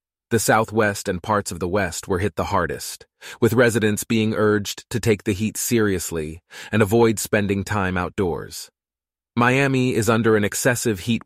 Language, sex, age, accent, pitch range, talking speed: English, male, 30-49, American, 95-115 Hz, 165 wpm